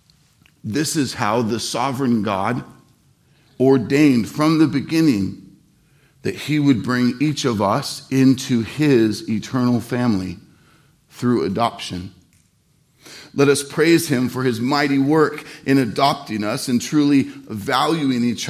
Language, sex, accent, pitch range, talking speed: English, male, American, 115-155 Hz, 125 wpm